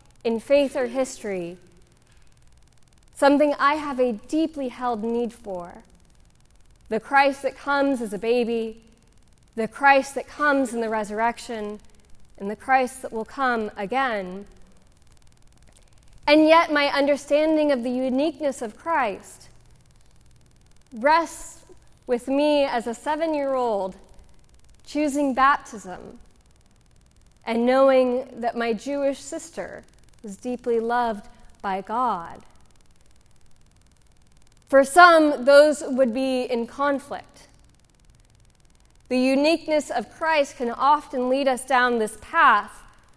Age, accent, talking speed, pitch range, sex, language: 20-39, American, 110 wpm, 225-280 Hz, female, English